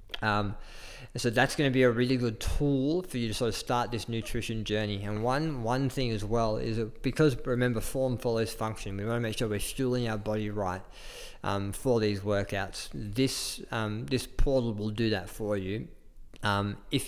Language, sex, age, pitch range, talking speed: English, male, 20-39, 105-120 Hz, 195 wpm